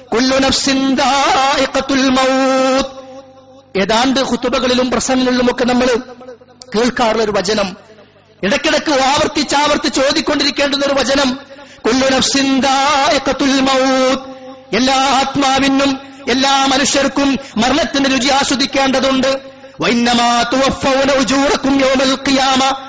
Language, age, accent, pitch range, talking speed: Malayalam, 30-49, native, 245-270 Hz, 90 wpm